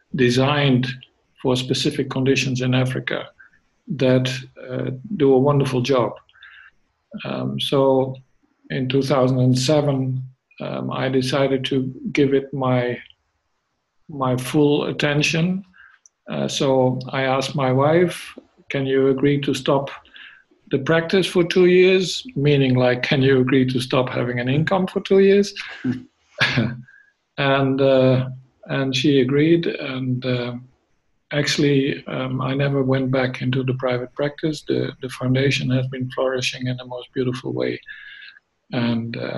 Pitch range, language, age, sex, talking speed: 125-140 Hz, English, 50-69, male, 130 wpm